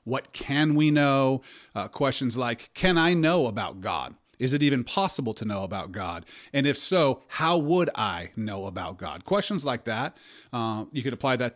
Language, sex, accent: English, male, American